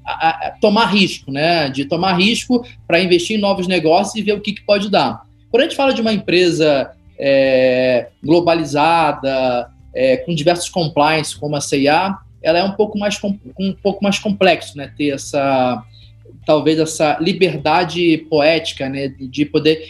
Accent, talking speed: Brazilian, 170 wpm